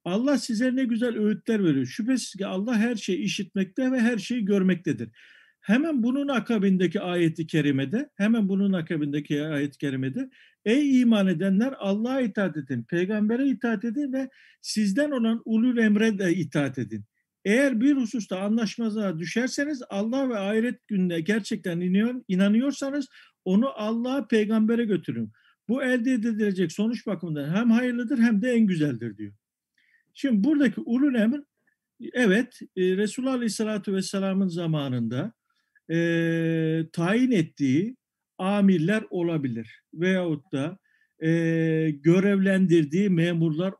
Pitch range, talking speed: 170-245 Hz, 125 wpm